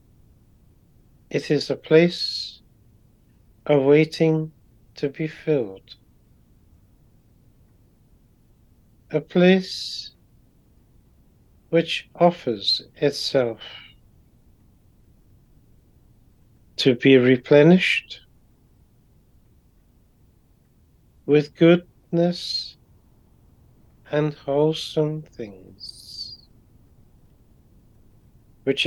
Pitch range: 110-150 Hz